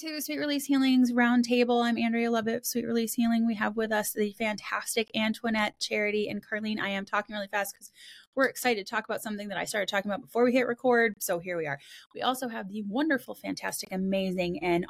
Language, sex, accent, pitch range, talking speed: English, female, American, 175-245 Hz, 220 wpm